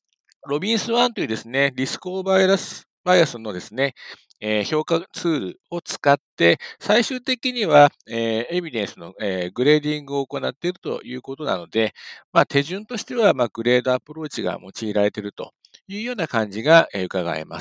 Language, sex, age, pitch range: Japanese, male, 60-79, 125-205 Hz